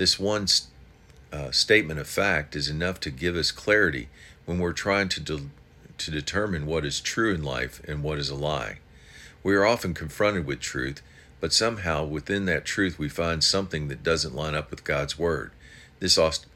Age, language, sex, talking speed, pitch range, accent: 50-69, English, male, 190 wpm, 75-90 Hz, American